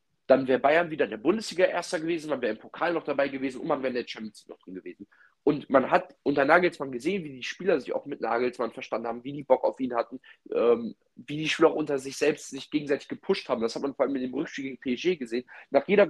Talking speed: 260 wpm